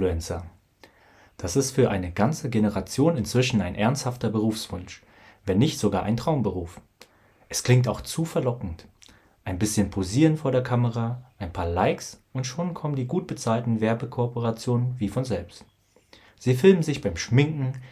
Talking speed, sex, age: 145 wpm, male, 30-49